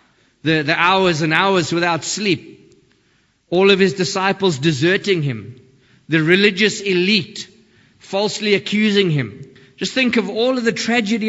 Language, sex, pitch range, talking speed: English, male, 130-180 Hz, 140 wpm